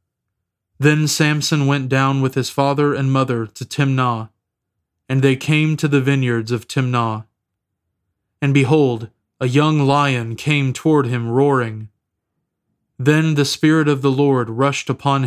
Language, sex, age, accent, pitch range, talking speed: English, male, 20-39, American, 115-140 Hz, 140 wpm